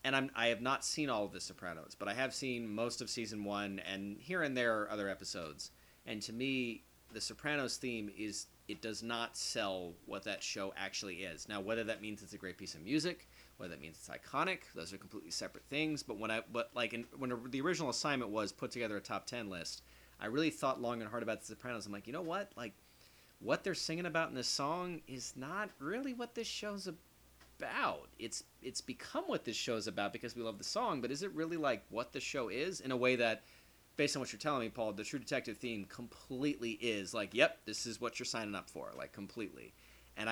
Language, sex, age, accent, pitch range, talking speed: English, male, 30-49, American, 100-130 Hz, 235 wpm